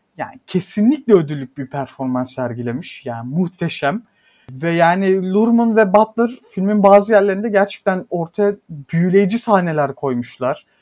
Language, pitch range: Turkish, 170-215 Hz